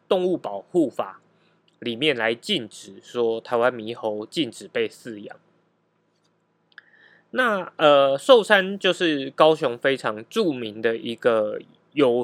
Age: 20-39